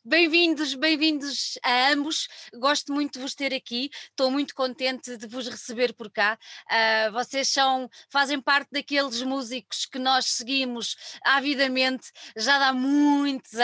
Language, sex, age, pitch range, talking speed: Portuguese, female, 20-39, 220-275 Hz, 130 wpm